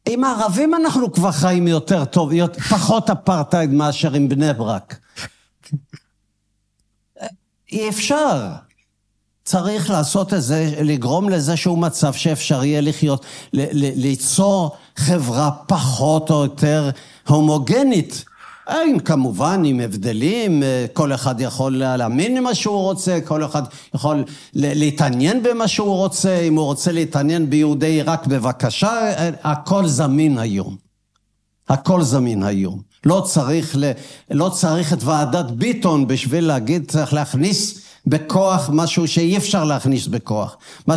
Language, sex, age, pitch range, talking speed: Hebrew, male, 60-79, 140-175 Hz, 125 wpm